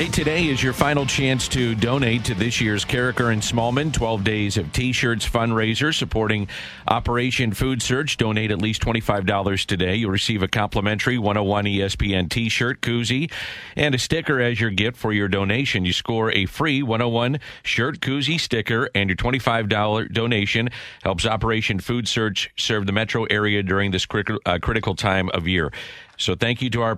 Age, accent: 50-69, American